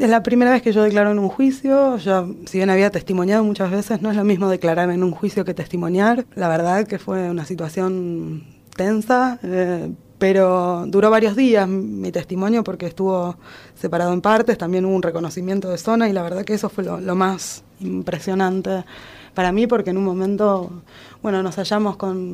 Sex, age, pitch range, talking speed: female, 20-39, 170-205 Hz, 195 wpm